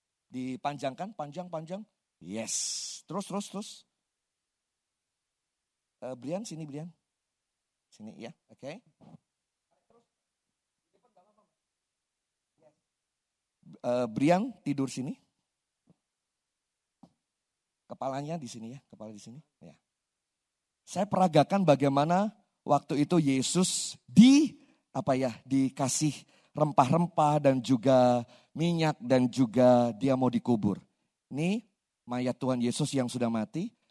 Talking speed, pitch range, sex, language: 95 wpm, 135-195 Hz, male, Indonesian